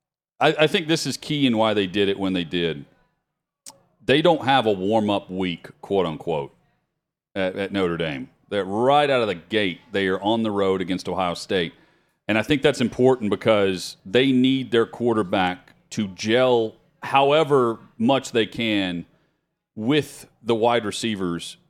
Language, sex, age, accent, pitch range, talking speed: English, male, 40-59, American, 95-125 Hz, 160 wpm